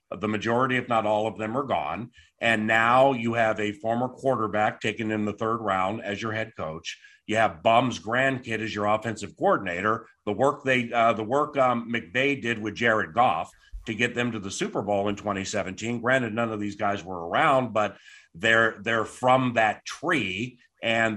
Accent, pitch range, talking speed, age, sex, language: American, 105-125 Hz, 195 wpm, 50-69, male, English